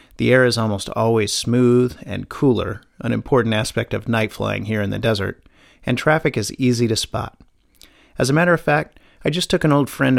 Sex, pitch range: male, 115-140 Hz